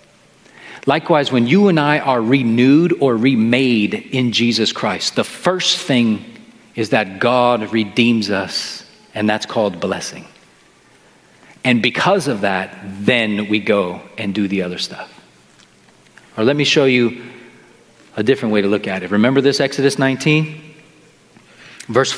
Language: English